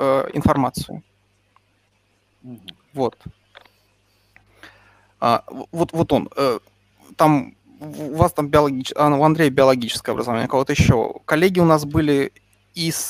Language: Russian